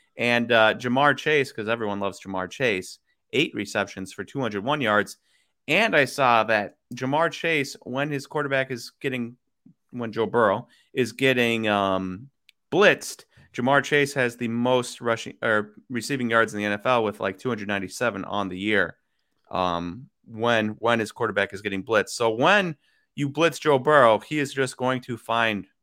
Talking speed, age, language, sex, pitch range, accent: 165 wpm, 30-49, English, male, 105-140 Hz, American